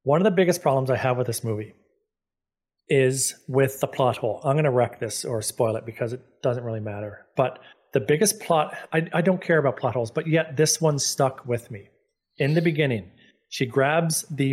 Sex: male